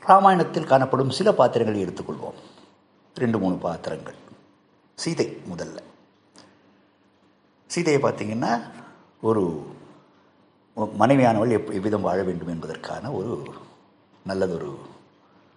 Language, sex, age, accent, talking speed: Tamil, male, 50-69, native, 80 wpm